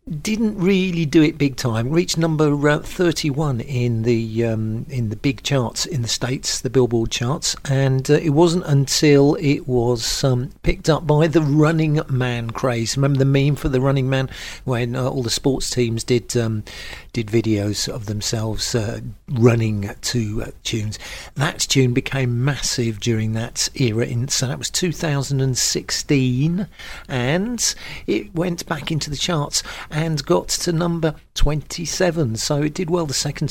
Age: 50-69